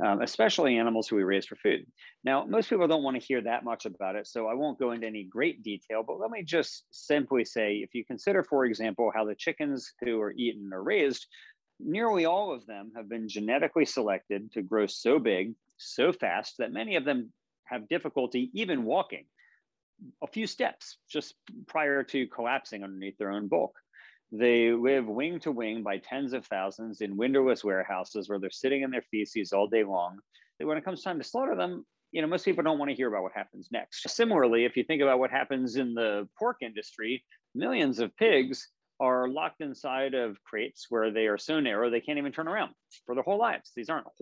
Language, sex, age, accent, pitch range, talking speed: English, male, 40-59, American, 110-145 Hz, 210 wpm